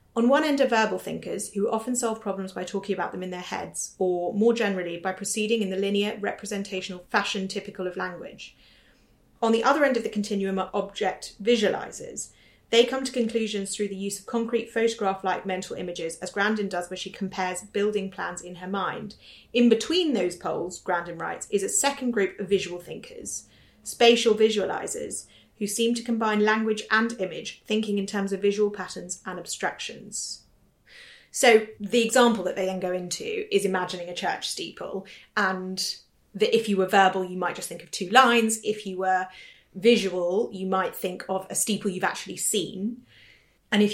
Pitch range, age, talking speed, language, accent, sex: 185-225 Hz, 30-49, 185 wpm, English, British, female